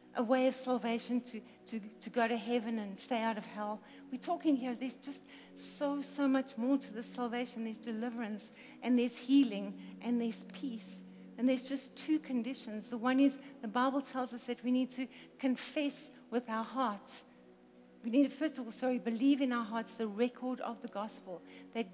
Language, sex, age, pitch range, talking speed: English, female, 60-79, 225-260 Hz, 195 wpm